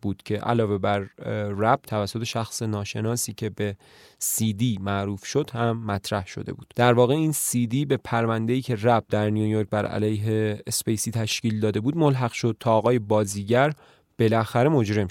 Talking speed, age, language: 160 wpm, 30-49, Persian